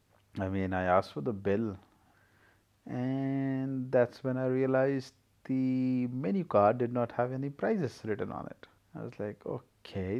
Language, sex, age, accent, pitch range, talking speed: English, male, 30-49, Indian, 100-125 Hz, 160 wpm